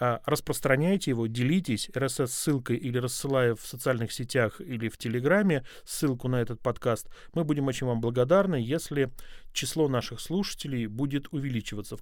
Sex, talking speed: male, 145 wpm